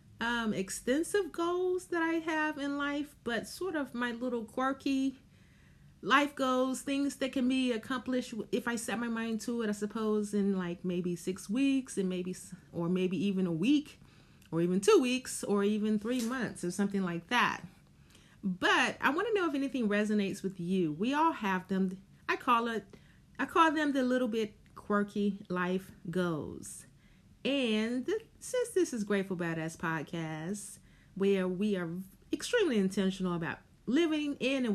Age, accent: 30-49, American